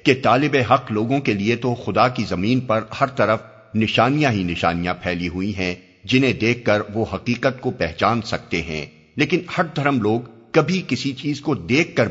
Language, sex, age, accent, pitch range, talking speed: English, male, 50-69, Indian, 95-125 Hz, 190 wpm